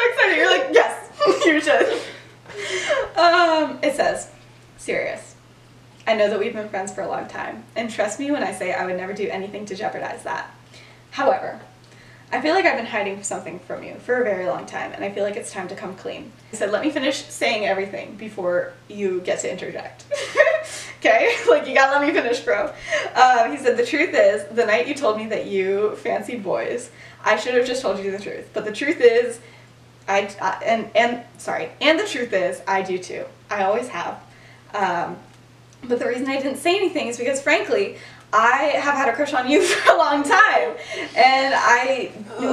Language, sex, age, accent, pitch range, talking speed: English, female, 10-29, American, 210-300 Hz, 205 wpm